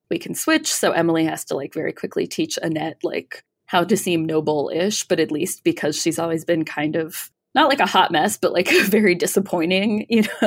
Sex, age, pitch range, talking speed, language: female, 20-39, 165-215 Hz, 205 wpm, English